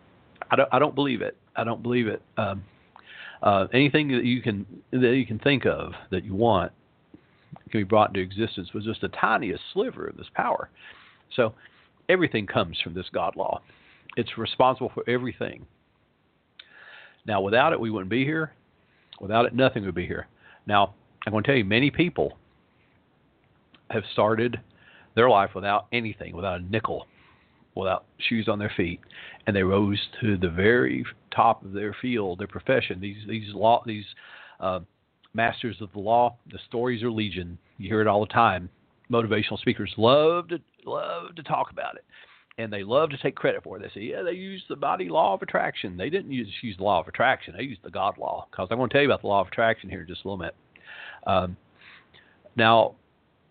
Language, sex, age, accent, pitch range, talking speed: English, male, 50-69, American, 100-120 Hz, 190 wpm